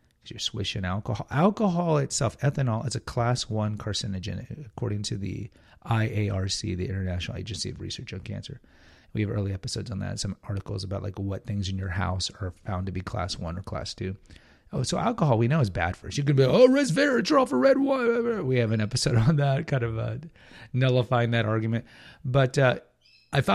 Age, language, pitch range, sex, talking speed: 30-49, English, 95-135 Hz, male, 200 wpm